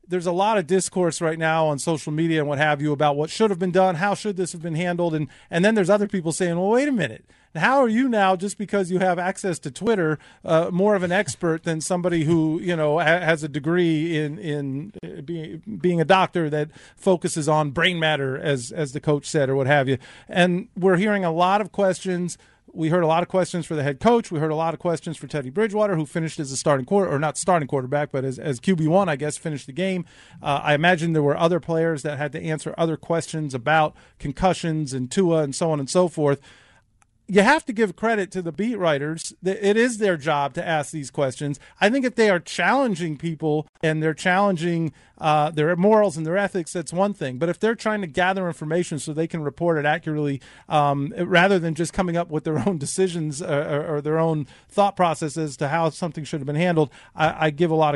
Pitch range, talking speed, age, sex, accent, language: 150-185 Hz, 235 wpm, 40-59, male, American, English